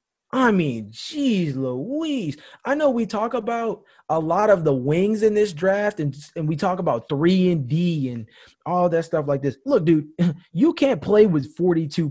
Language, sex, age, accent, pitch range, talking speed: English, male, 20-39, American, 140-175 Hz, 190 wpm